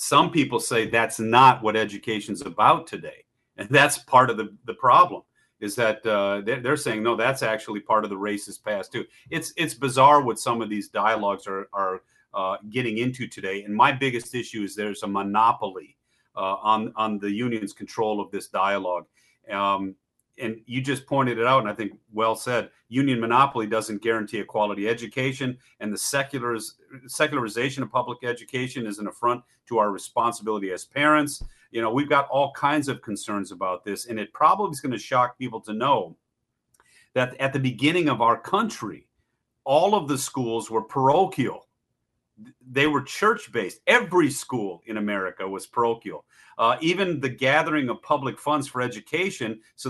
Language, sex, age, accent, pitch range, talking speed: English, male, 40-59, American, 105-135 Hz, 175 wpm